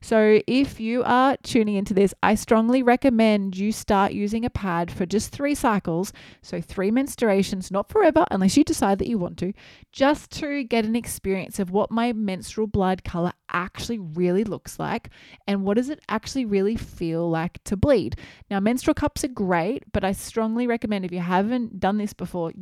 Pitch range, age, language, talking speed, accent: 175-225 Hz, 20-39, English, 190 wpm, Australian